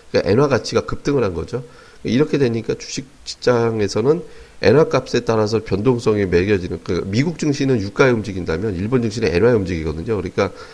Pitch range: 100-135 Hz